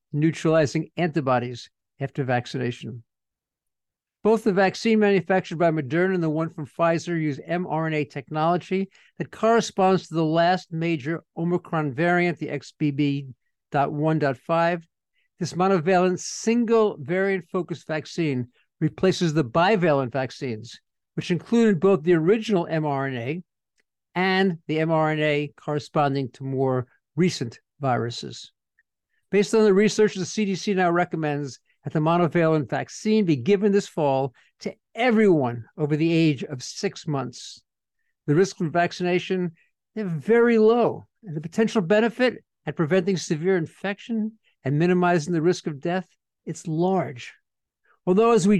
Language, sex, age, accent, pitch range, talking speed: English, male, 50-69, American, 150-190 Hz, 125 wpm